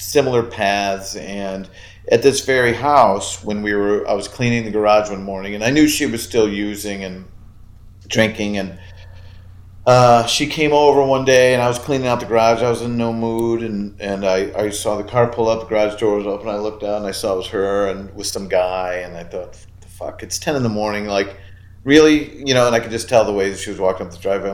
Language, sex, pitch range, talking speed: English, male, 95-120 Hz, 245 wpm